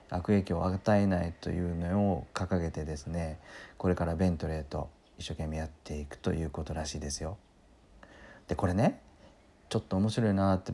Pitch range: 80-105 Hz